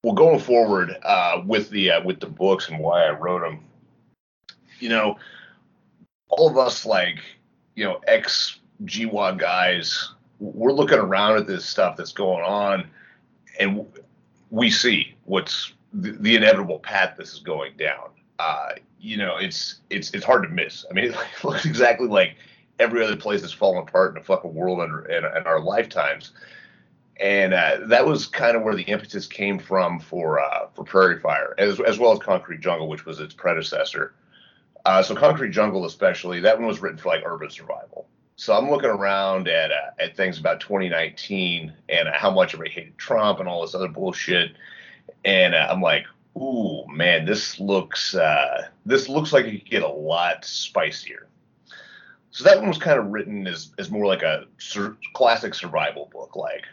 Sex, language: male, English